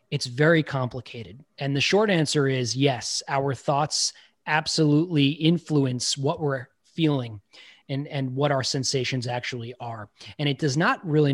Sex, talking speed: male, 150 wpm